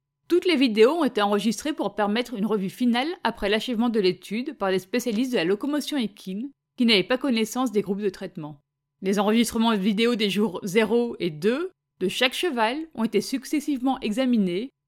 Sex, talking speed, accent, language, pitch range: female, 185 wpm, French, French, 190-250 Hz